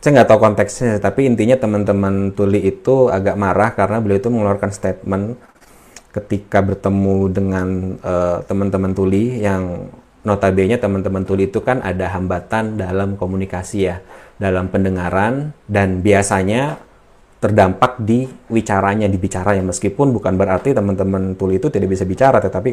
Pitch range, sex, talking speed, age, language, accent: 95-110 Hz, male, 135 wpm, 30-49, Indonesian, native